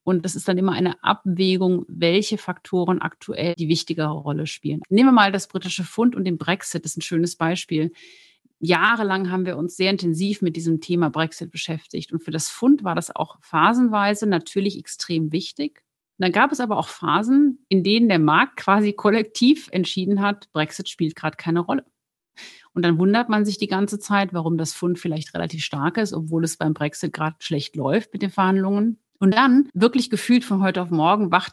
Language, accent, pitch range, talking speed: German, German, 165-200 Hz, 195 wpm